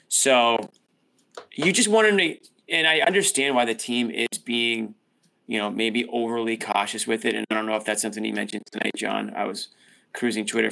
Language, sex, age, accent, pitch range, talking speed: English, male, 20-39, American, 110-150 Hz, 195 wpm